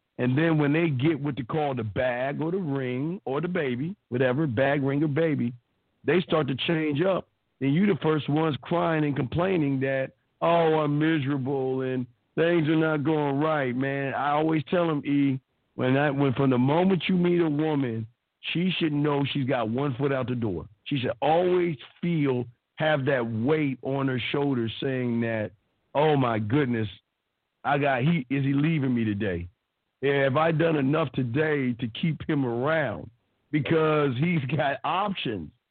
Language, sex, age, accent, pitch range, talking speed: English, male, 50-69, American, 130-165 Hz, 180 wpm